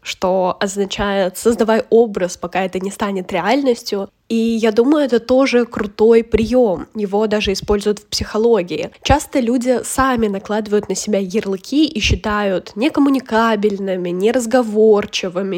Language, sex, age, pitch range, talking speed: Russian, female, 10-29, 200-240 Hz, 125 wpm